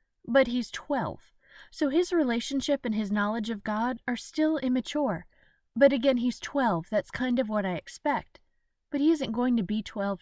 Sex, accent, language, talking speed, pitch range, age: female, American, English, 180 wpm, 200-265 Hz, 30-49